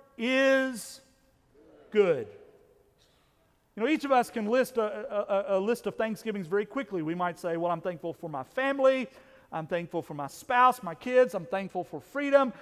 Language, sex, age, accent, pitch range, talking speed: English, male, 40-59, American, 200-270 Hz, 175 wpm